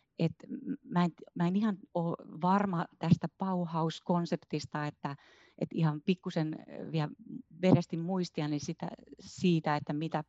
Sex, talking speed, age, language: female, 115 wpm, 30-49, Finnish